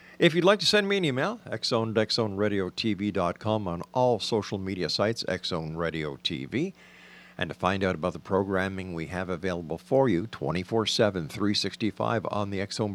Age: 50-69